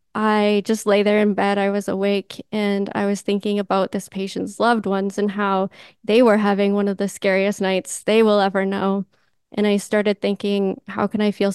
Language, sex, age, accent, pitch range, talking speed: English, female, 10-29, American, 200-215 Hz, 210 wpm